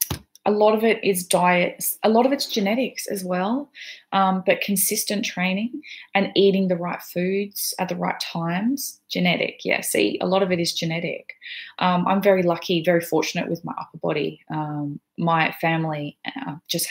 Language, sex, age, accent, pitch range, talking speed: English, female, 20-39, Australian, 155-200 Hz, 180 wpm